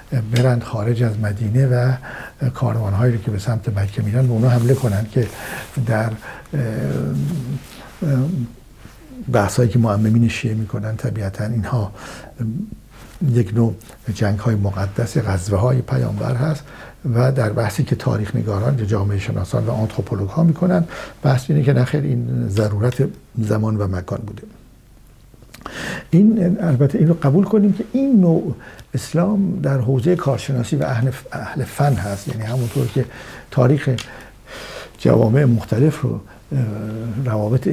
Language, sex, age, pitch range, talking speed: Persian, male, 60-79, 110-135 Hz, 125 wpm